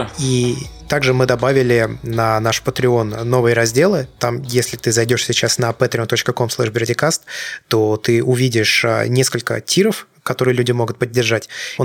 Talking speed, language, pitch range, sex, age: 130 wpm, Russian, 115-140 Hz, male, 20-39